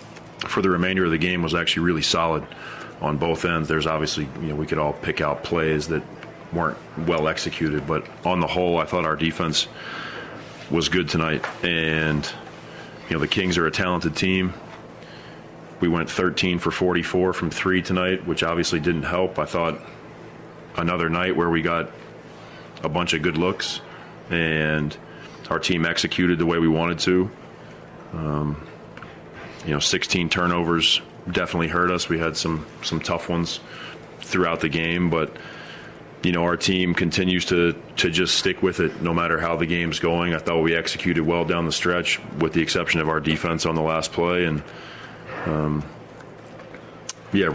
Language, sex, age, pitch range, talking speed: English, male, 30-49, 80-90 Hz, 170 wpm